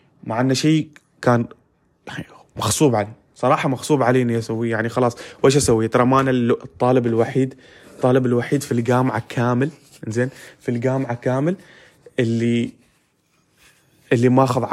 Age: 20-39